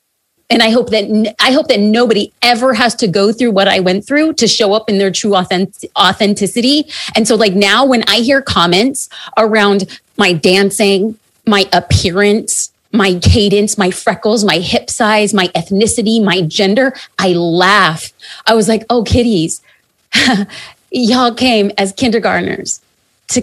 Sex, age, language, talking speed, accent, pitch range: female, 30-49, English, 155 wpm, American, 195-230 Hz